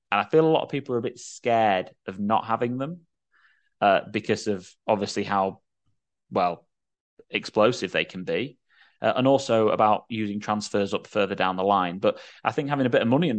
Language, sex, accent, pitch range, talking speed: English, male, British, 95-120 Hz, 200 wpm